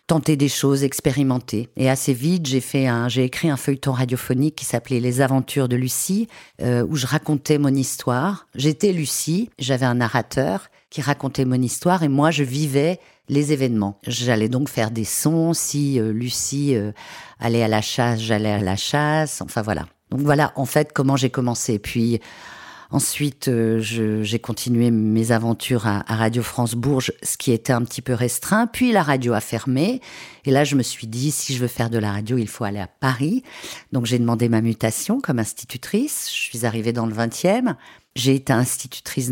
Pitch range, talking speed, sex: 120-150 Hz, 195 wpm, female